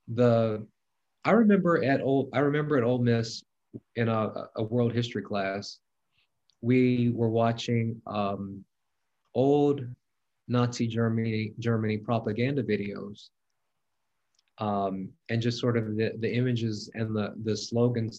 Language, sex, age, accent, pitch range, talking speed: English, male, 30-49, American, 105-125 Hz, 125 wpm